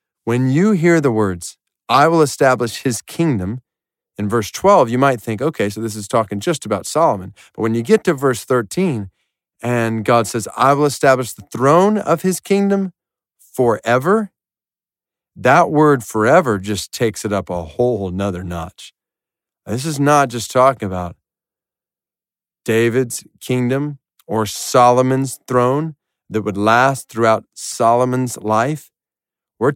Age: 40-59